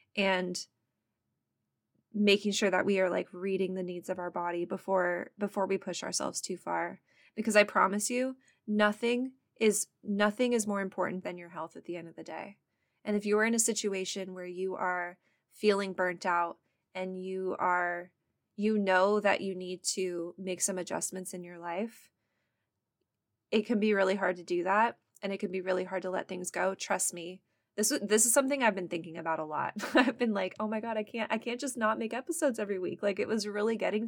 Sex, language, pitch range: female, English, 180-220 Hz